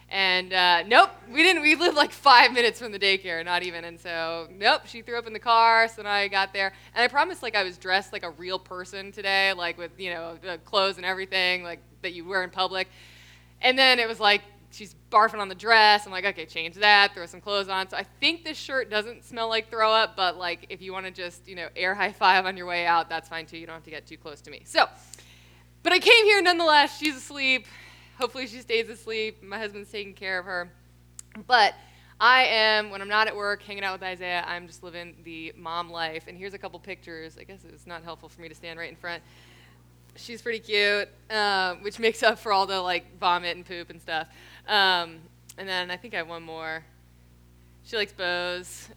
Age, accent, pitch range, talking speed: 20-39, American, 170-230 Hz, 235 wpm